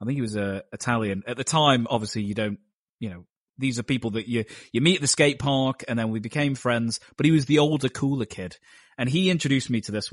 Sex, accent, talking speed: male, British, 255 wpm